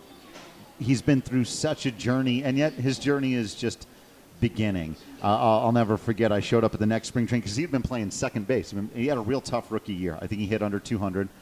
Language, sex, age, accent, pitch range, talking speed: English, male, 40-59, American, 95-115 Hz, 240 wpm